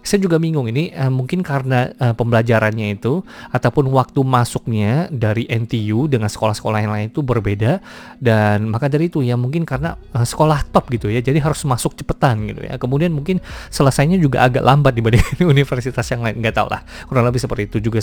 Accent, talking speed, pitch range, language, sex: native, 190 wpm, 110-135 Hz, Indonesian, male